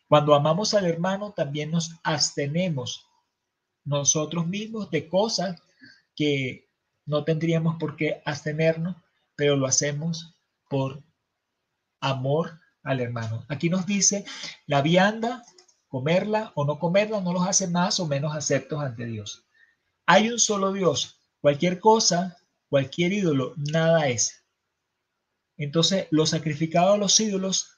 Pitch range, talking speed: 140-180 Hz, 125 wpm